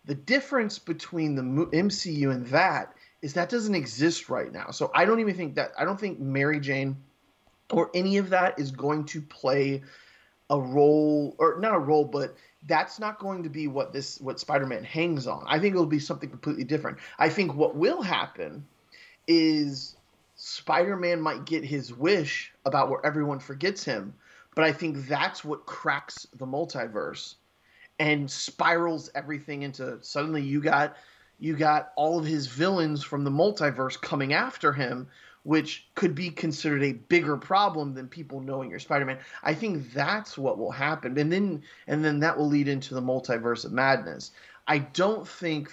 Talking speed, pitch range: 180 wpm, 140-165 Hz